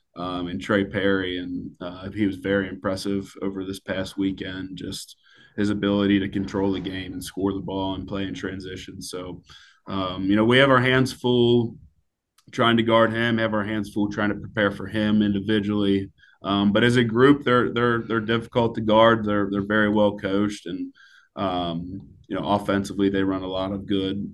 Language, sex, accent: English, male, American